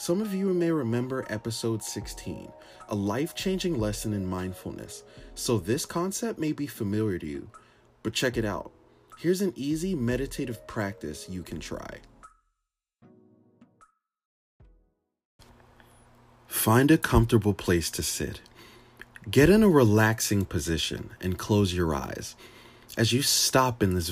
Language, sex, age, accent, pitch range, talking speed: English, male, 30-49, American, 95-130 Hz, 130 wpm